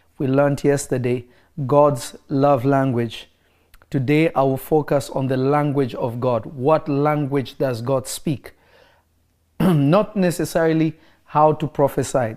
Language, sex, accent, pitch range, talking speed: English, male, South African, 130-150 Hz, 120 wpm